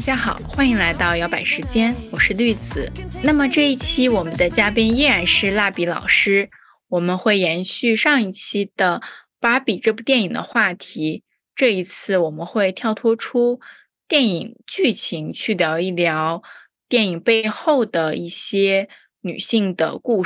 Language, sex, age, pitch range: Chinese, female, 20-39, 180-235 Hz